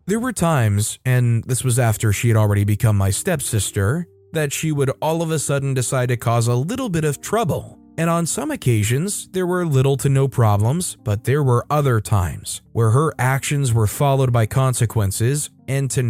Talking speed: 195 wpm